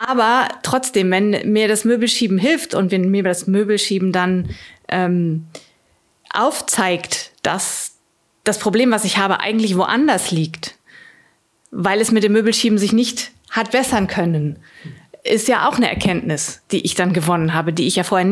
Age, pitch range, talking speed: 30-49, 185-225 Hz, 155 wpm